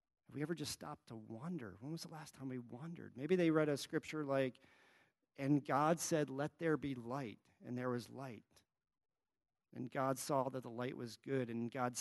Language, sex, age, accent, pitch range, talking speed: English, male, 40-59, American, 115-150 Hz, 205 wpm